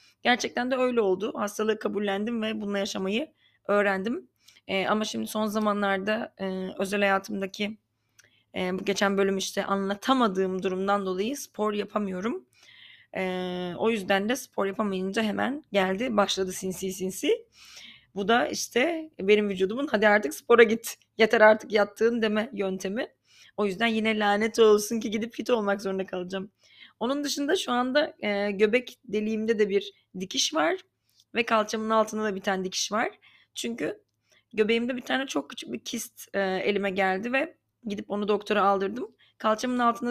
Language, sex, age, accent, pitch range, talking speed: Turkish, female, 30-49, native, 195-235 Hz, 150 wpm